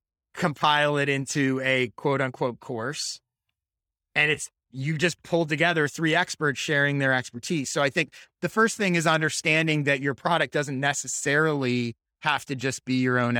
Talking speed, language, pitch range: 165 wpm, English, 125-165 Hz